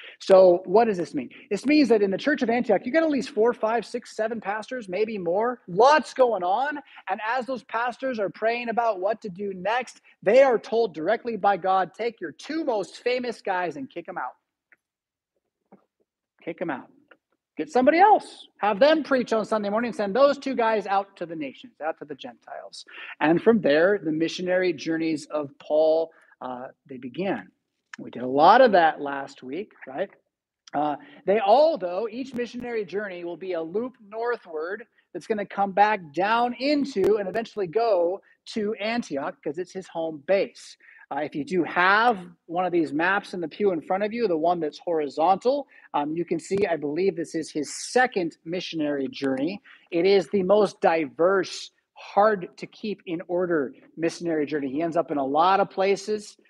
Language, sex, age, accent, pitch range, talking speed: English, male, 30-49, American, 170-240 Hz, 185 wpm